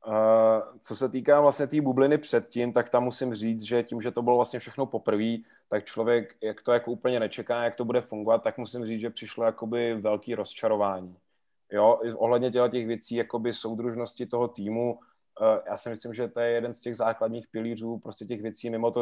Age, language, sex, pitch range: 20-39, Czech, male, 105-115 Hz